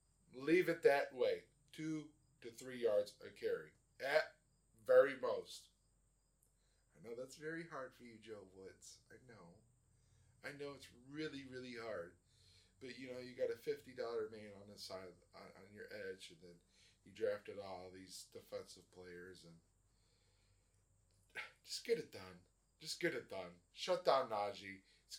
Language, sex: English, male